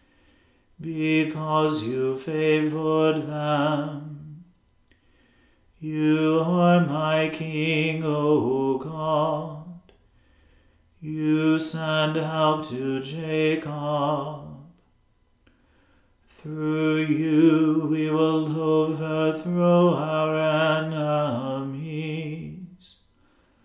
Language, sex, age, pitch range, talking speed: English, male, 40-59, 150-155 Hz, 55 wpm